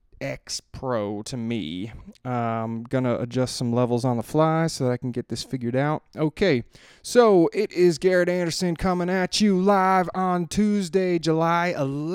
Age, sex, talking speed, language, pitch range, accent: 20-39, male, 165 wpm, English, 120-145 Hz, American